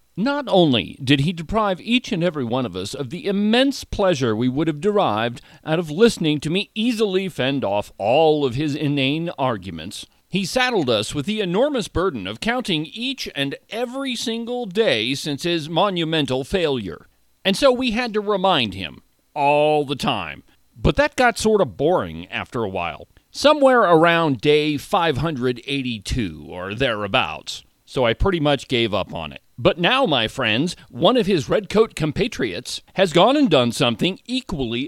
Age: 40-59